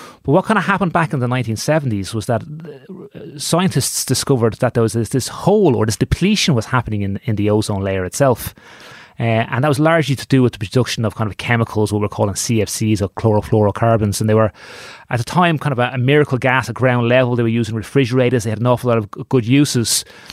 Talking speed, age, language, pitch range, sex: 225 wpm, 30-49, English, 110-140 Hz, male